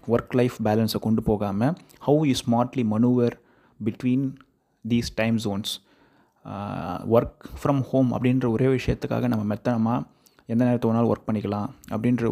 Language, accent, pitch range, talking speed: Tamil, native, 110-130 Hz, 125 wpm